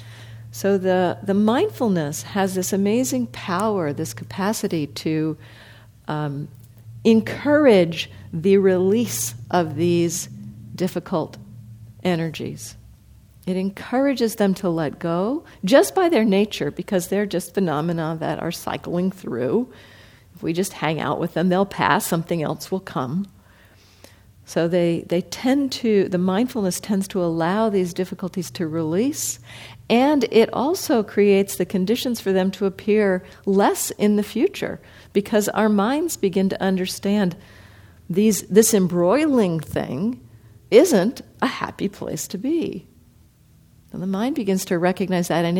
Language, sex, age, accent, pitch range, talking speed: English, female, 50-69, American, 150-205 Hz, 135 wpm